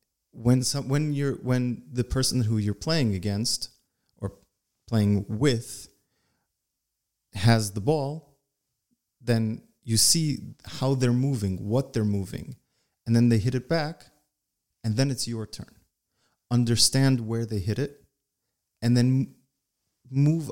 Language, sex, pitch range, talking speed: English, male, 105-135 Hz, 130 wpm